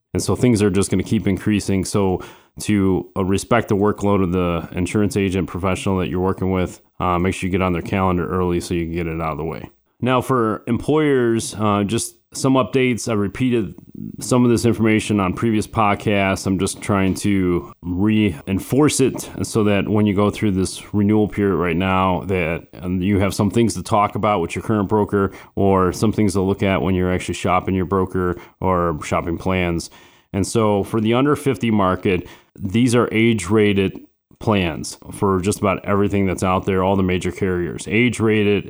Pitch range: 90-110 Hz